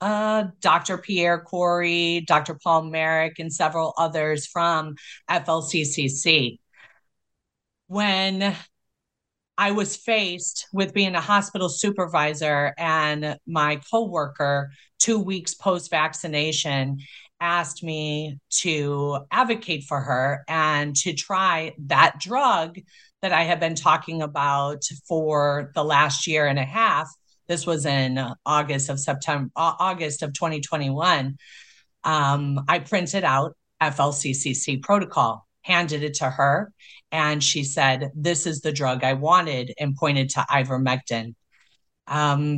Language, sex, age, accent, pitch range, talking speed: English, female, 30-49, American, 140-175 Hz, 120 wpm